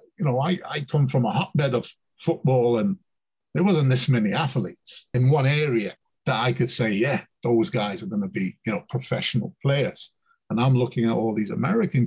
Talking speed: 205 wpm